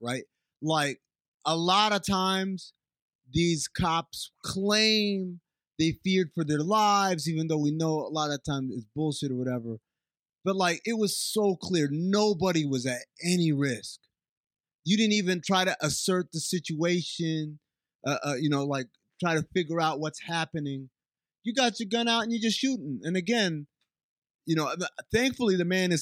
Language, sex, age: English, male, 30-49